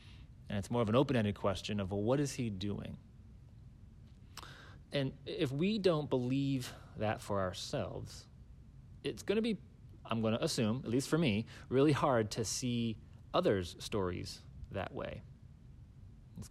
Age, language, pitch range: 30-49, English, 105-125 Hz